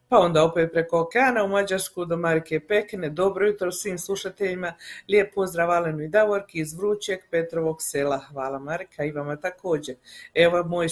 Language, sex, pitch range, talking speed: Croatian, female, 160-185 Hz, 160 wpm